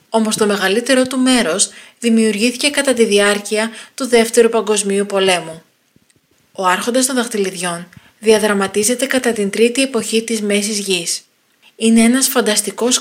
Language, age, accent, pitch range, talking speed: Greek, 20-39, native, 205-245 Hz, 130 wpm